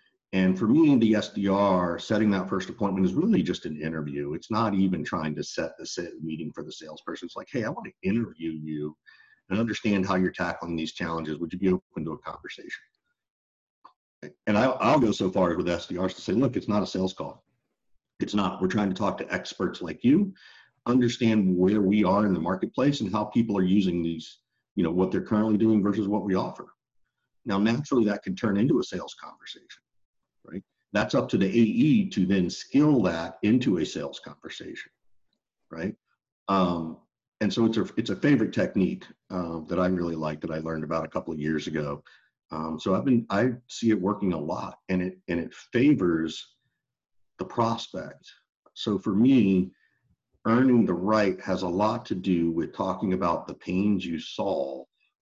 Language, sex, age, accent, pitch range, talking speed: English, male, 50-69, American, 85-105 Hz, 190 wpm